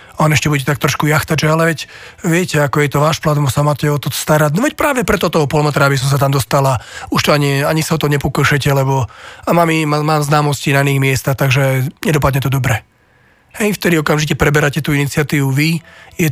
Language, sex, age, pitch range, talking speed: Slovak, male, 40-59, 140-155 Hz, 215 wpm